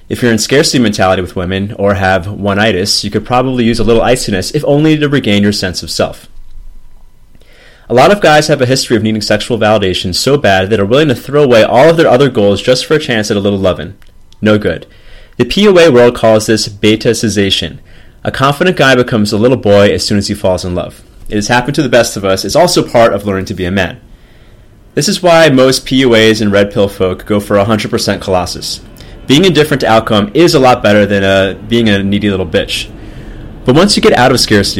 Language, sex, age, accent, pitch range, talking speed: English, male, 30-49, American, 95-120 Hz, 230 wpm